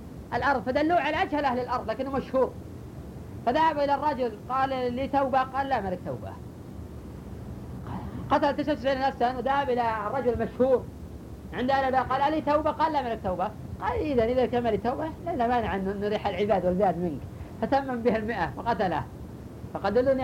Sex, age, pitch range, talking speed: female, 50-69, 240-295 Hz, 150 wpm